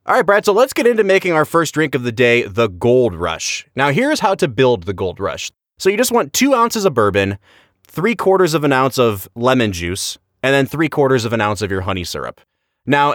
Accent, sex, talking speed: American, male, 240 wpm